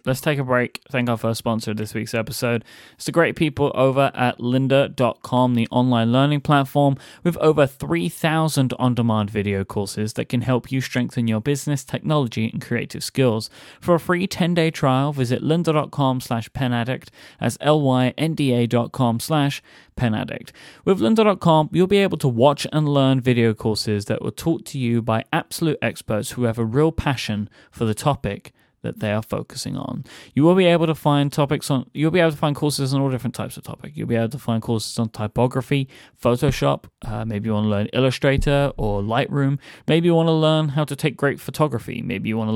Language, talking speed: English, 195 wpm